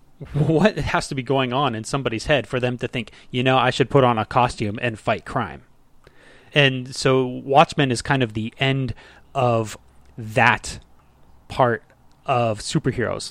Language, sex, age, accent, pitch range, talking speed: English, male, 30-49, American, 120-140 Hz, 165 wpm